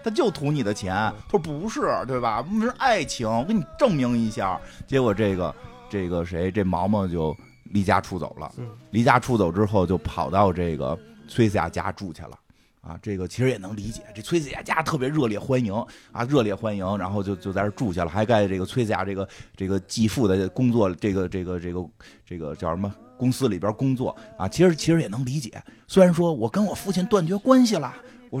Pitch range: 95-145 Hz